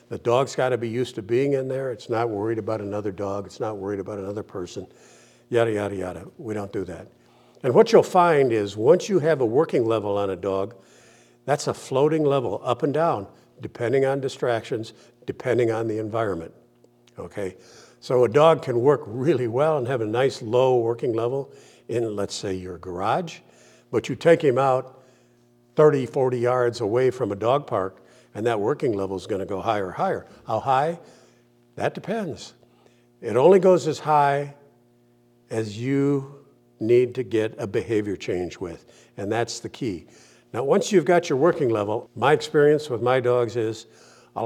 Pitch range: 110-130 Hz